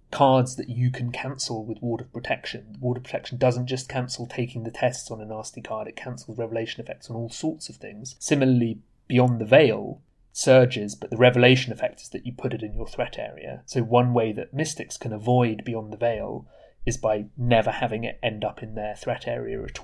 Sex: male